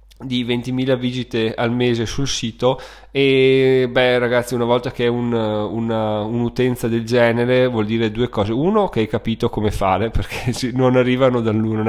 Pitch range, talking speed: 110-125 Hz, 170 wpm